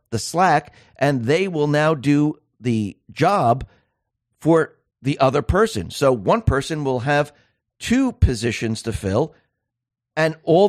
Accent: American